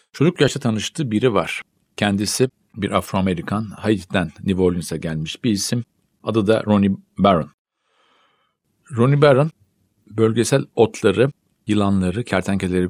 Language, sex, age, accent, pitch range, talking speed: Turkish, male, 50-69, native, 95-125 Hz, 110 wpm